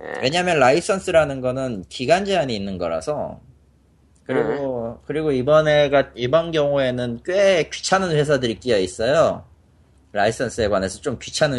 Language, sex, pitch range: Korean, male, 90-150 Hz